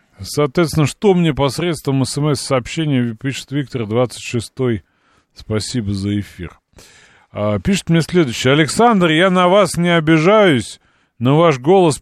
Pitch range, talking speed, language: 105-155 Hz, 125 wpm, Russian